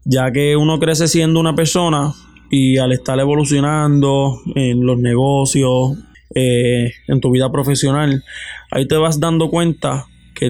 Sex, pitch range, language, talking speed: male, 130-155 Hz, Spanish, 145 wpm